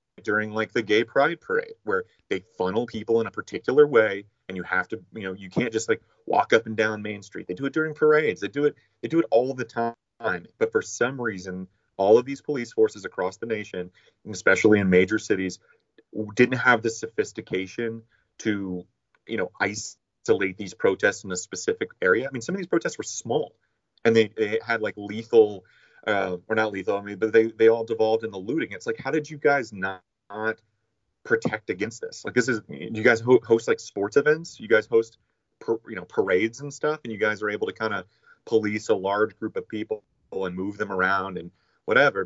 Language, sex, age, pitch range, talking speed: English, male, 30-49, 105-155 Hz, 215 wpm